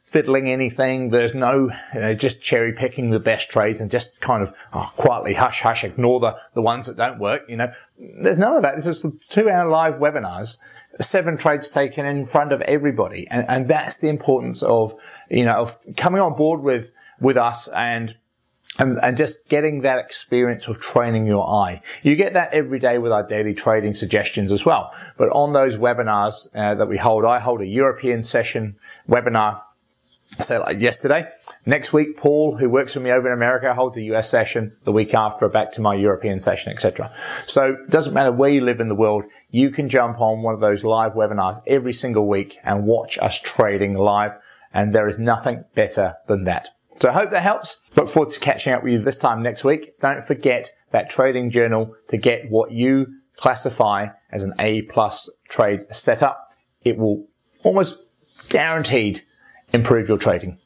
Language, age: English, 30-49